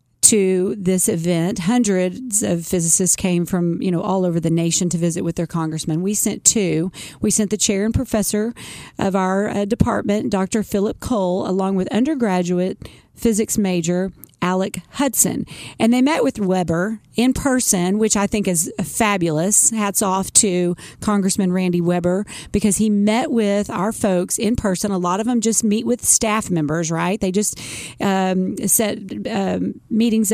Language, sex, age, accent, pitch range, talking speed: English, female, 40-59, American, 180-220 Hz, 165 wpm